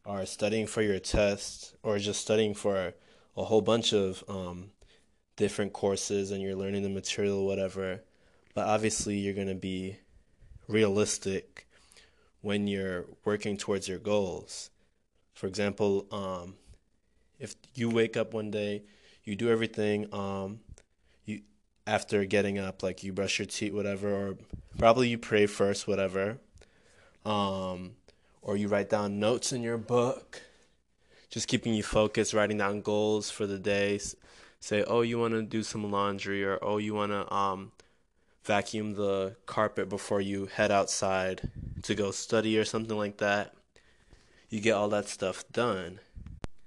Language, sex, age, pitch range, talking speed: English, male, 20-39, 95-105 Hz, 150 wpm